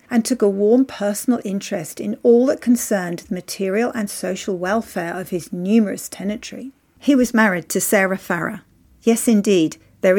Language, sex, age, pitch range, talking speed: English, female, 40-59, 195-265 Hz, 165 wpm